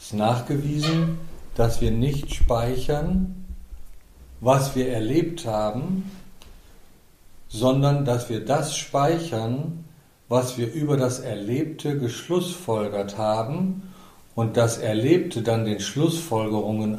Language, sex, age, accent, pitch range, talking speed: German, male, 50-69, German, 105-135 Hz, 100 wpm